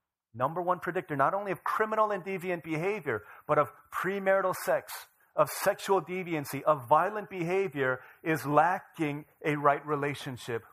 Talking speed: 140 wpm